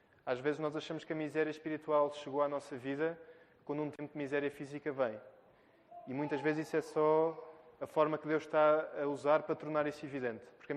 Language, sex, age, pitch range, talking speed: Portuguese, male, 20-39, 135-155 Hz, 210 wpm